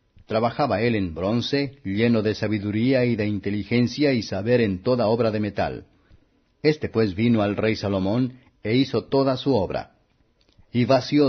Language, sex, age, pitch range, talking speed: Spanish, male, 50-69, 105-125 Hz, 160 wpm